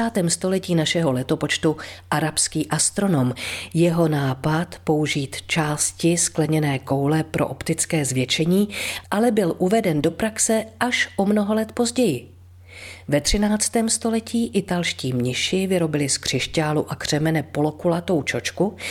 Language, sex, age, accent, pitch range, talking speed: Czech, female, 40-59, native, 135-190 Hz, 115 wpm